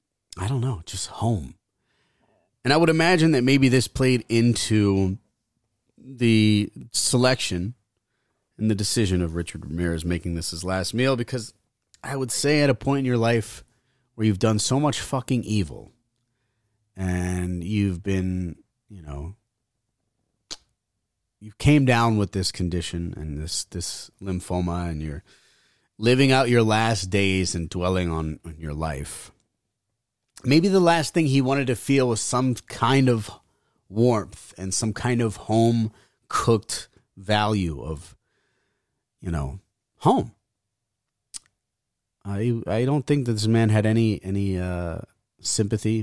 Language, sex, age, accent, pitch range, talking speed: English, male, 30-49, American, 90-120 Hz, 140 wpm